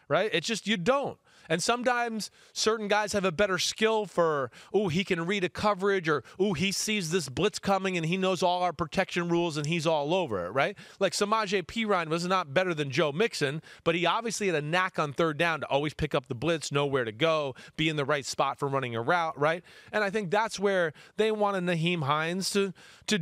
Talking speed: 230 wpm